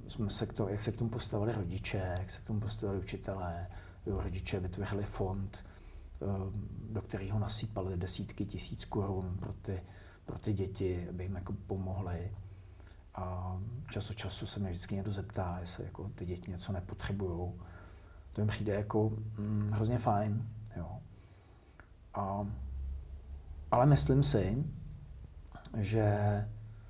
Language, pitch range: Czech, 90-110 Hz